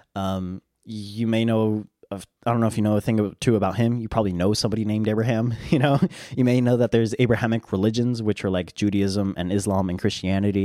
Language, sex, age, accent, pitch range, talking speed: English, male, 20-39, American, 100-130 Hz, 215 wpm